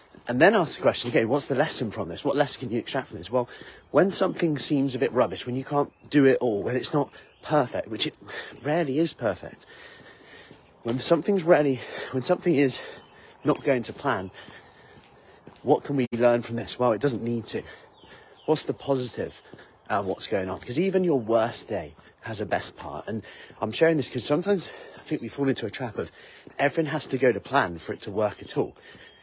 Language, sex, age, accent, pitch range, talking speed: English, male, 30-49, British, 120-150 Hz, 210 wpm